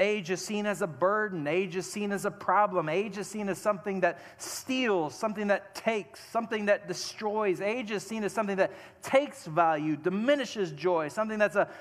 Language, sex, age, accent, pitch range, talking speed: English, male, 40-59, American, 120-190 Hz, 195 wpm